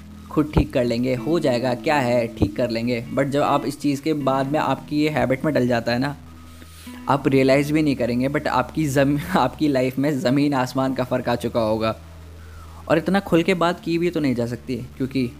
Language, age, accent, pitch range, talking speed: Hindi, 10-29, native, 120-150 Hz, 220 wpm